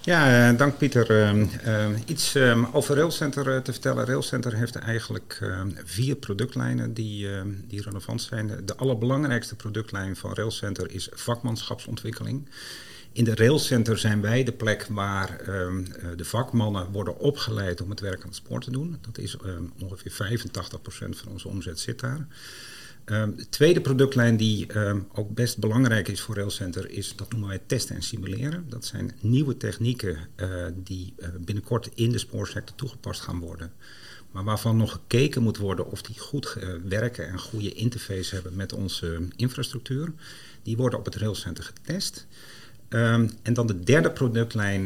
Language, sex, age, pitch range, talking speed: Dutch, male, 50-69, 95-120 Hz, 165 wpm